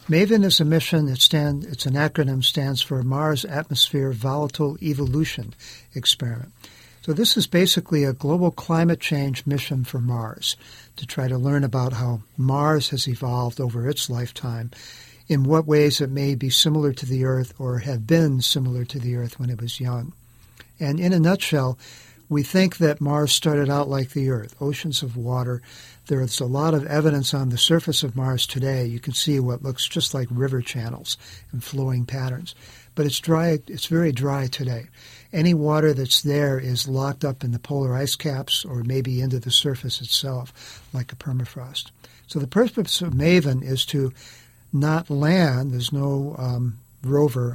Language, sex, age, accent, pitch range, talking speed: English, male, 50-69, American, 125-150 Hz, 175 wpm